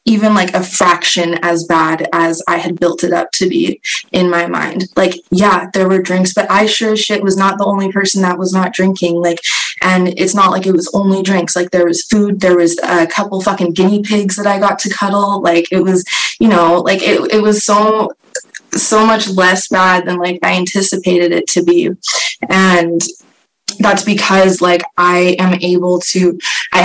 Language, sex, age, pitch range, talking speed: English, female, 20-39, 175-205 Hz, 205 wpm